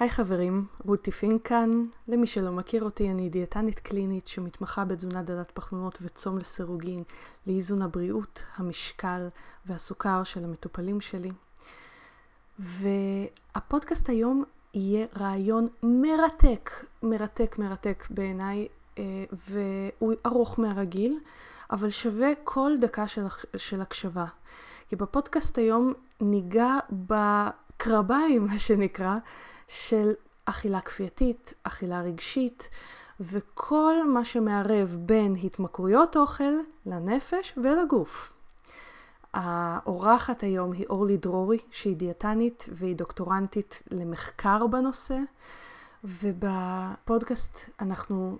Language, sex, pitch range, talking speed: Hebrew, female, 190-230 Hz, 95 wpm